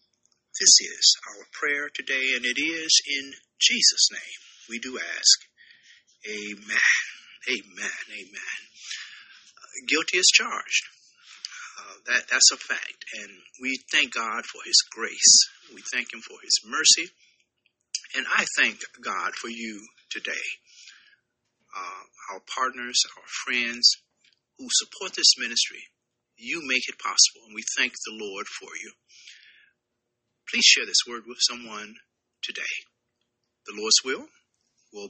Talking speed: 130 wpm